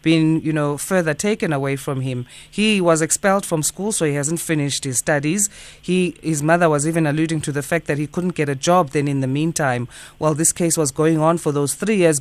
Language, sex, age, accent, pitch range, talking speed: English, female, 30-49, South African, 150-180 Hz, 240 wpm